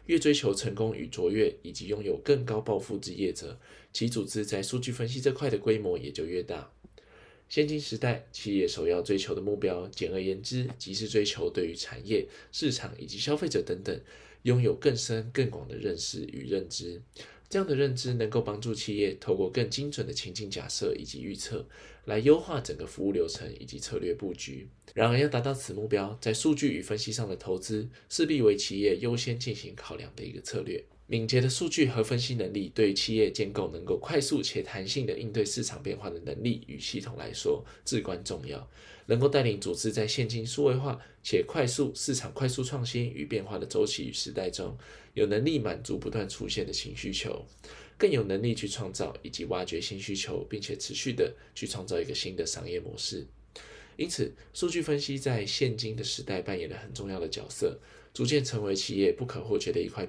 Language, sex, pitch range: Chinese, male, 110-150 Hz